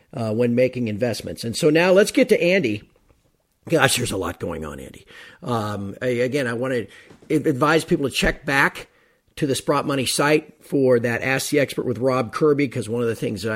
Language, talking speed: English, 210 wpm